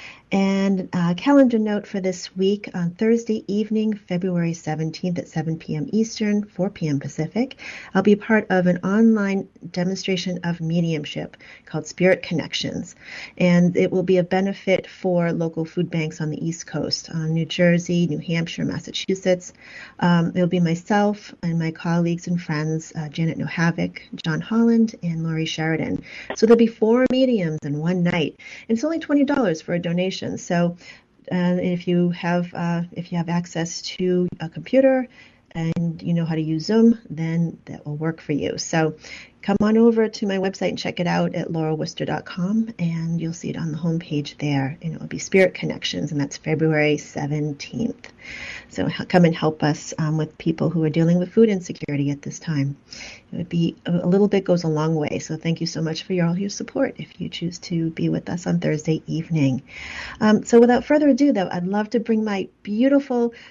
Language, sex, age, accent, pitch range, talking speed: English, female, 40-59, American, 165-200 Hz, 190 wpm